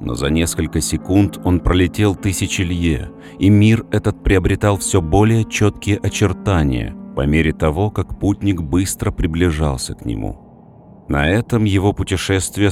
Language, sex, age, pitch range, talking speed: Russian, male, 40-59, 80-100 Hz, 130 wpm